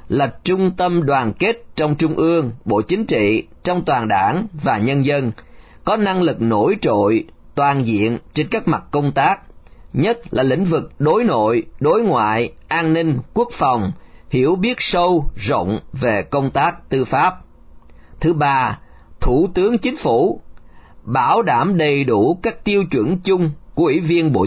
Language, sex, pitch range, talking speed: Vietnamese, male, 115-175 Hz, 165 wpm